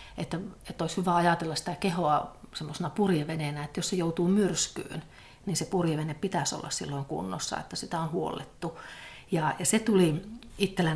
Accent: native